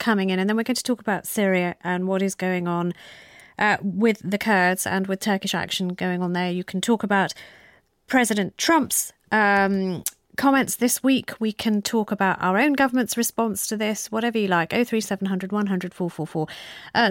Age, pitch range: 30-49, 180-225 Hz